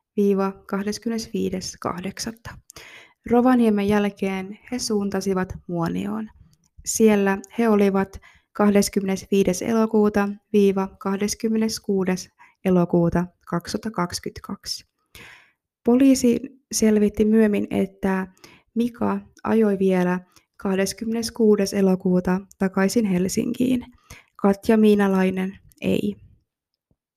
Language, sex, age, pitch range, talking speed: Finnish, female, 20-39, 190-220 Hz, 65 wpm